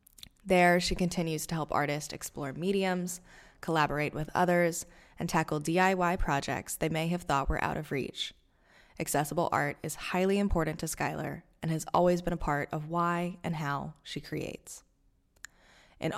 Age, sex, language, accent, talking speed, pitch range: 20-39, female, English, American, 160 wpm, 150-180 Hz